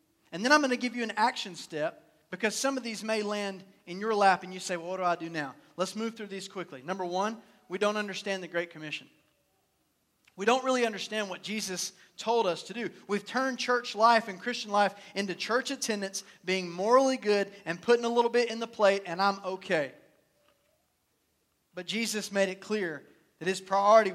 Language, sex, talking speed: English, male, 205 wpm